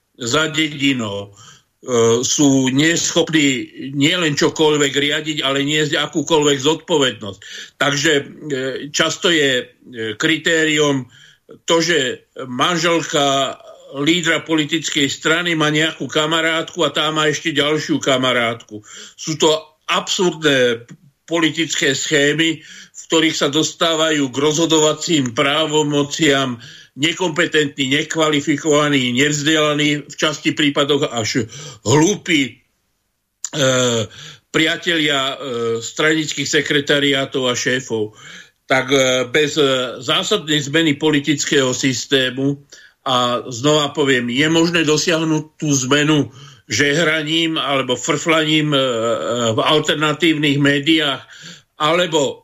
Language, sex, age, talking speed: Slovak, male, 50-69, 95 wpm